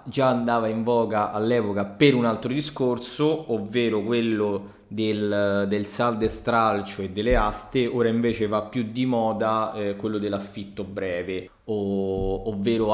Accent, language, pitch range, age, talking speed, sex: native, Italian, 100-120 Hz, 20-39, 140 wpm, male